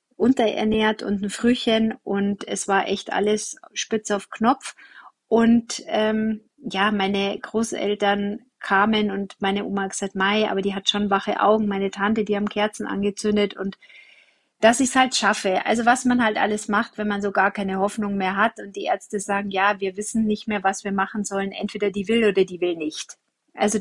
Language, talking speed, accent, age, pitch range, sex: German, 195 wpm, German, 30-49, 200-230 Hz, female